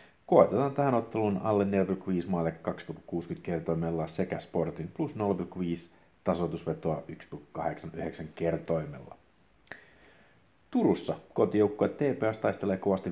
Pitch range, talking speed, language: 85-100 Hz, 90 wpm, Finnish